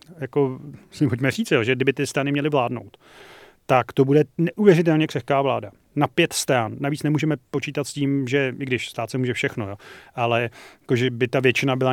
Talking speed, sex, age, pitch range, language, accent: 200 wpm, male, 30-49, 130-150 Hz, Czech, native